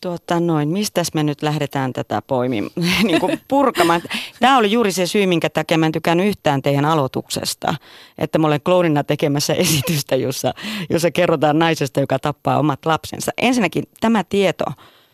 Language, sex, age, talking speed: Finnish, female, 30-49, 150 wpm